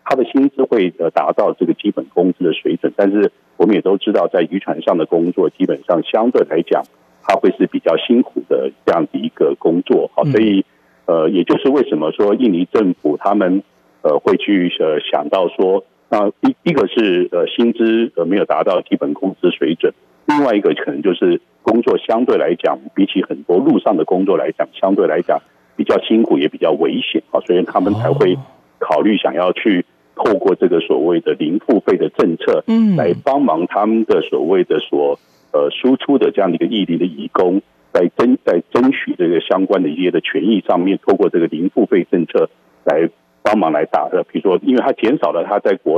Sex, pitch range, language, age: male, 310-450 Hz, Chinese, 50-69